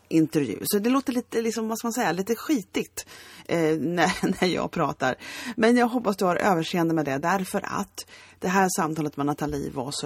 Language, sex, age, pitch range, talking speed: Swedish, female, 30-49, 145-210 Hz, 205 wpm